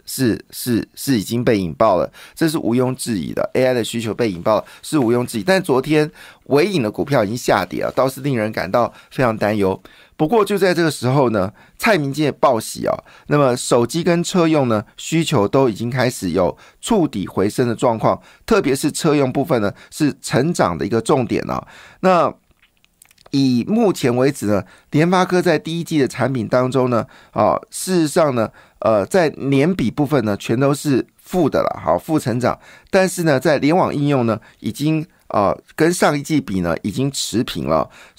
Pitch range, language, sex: 120-155 Hz, Chinese, male